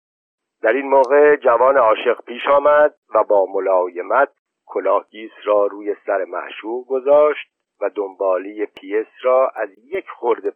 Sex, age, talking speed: male, 60-79, 135 wpm